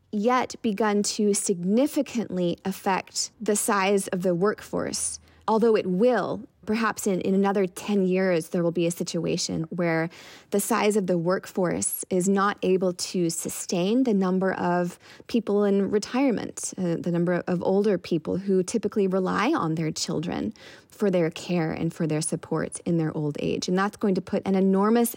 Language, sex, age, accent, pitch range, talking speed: English, female, 20-39, American, 175-215 Hz, 170 wpm